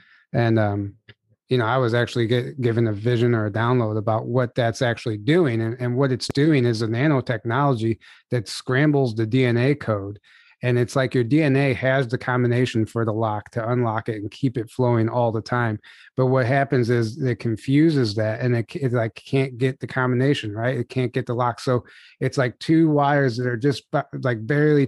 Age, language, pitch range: 30-49, English, 115-135 Hz